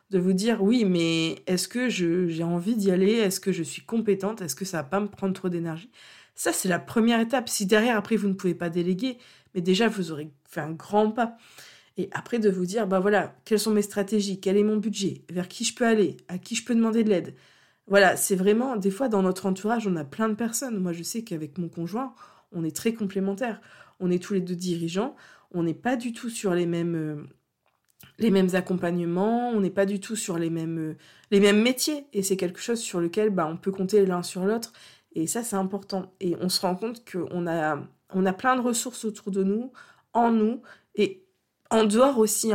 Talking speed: 235 wpm